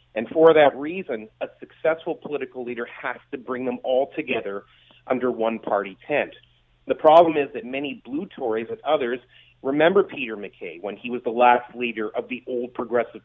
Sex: male